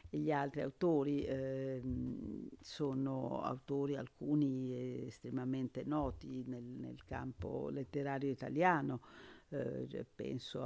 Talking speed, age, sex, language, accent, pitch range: 90 wpm, 50-69, female, Italian, native, 135-160 Hz